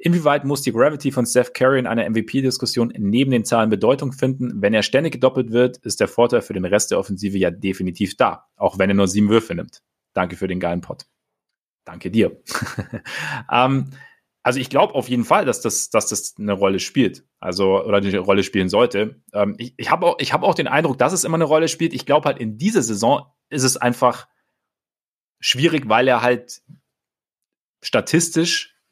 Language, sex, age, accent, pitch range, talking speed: German, male, 30-49, German, 105-130 Hz, 195 wpm